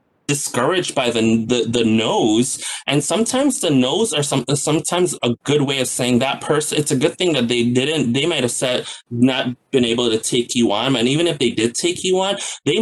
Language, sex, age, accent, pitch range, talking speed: English, male, 20-39, American, 120-145 Hz, 225 wpm